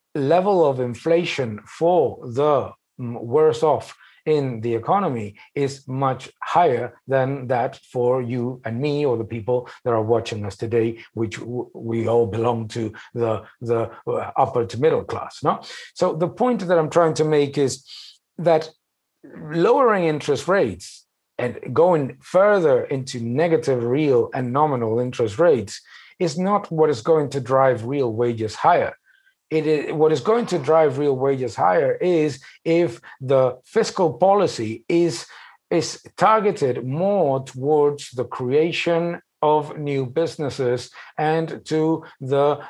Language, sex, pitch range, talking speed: English, male, 125-160 Hz, 140 wpm